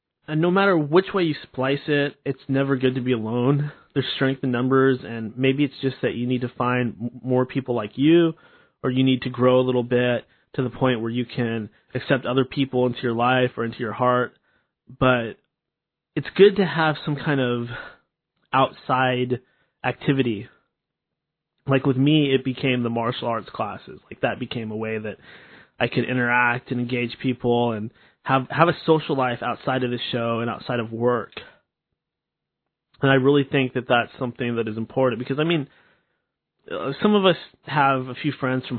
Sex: male